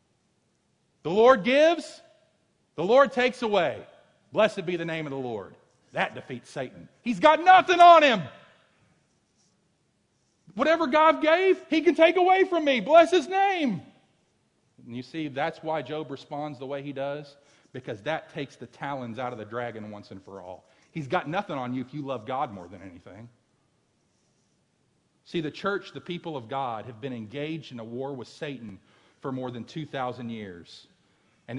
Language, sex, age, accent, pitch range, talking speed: English, male, 40-59, American, 110-160 Hz, 175 wpm